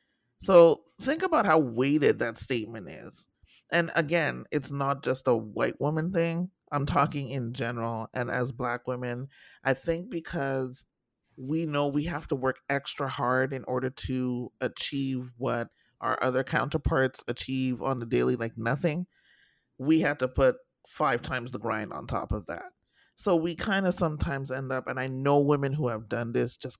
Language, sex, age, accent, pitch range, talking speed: English, male, 30-49, American, 125-160 Hz, 175 wpm